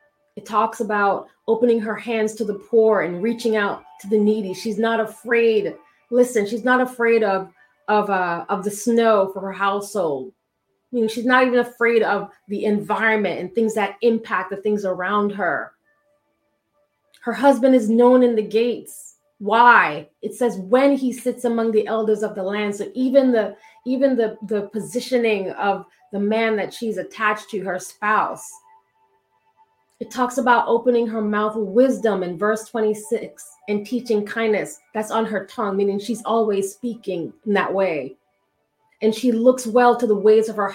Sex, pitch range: female, 200-235 Hz